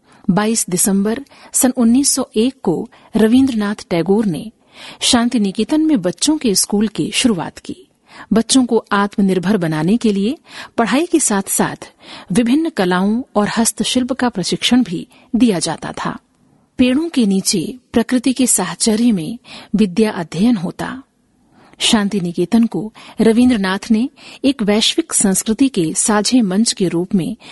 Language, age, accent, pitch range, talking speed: Hindi, 50-69, native, 200-255 Hz, 135 wpm